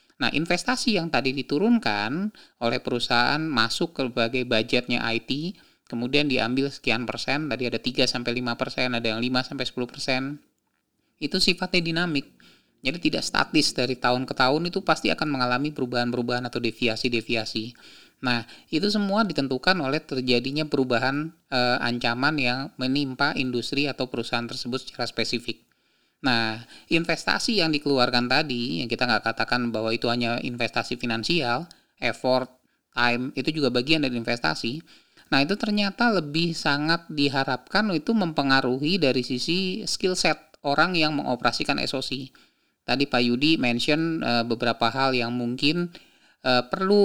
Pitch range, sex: 120-150 Hz, male